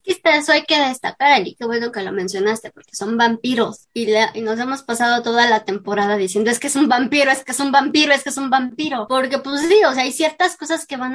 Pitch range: 220-280 Hz